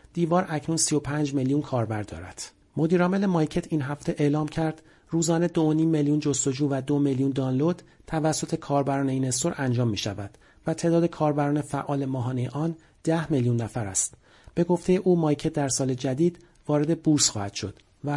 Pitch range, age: 130-160 Hz, 40-59